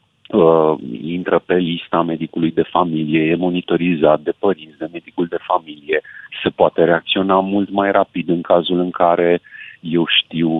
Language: Romanian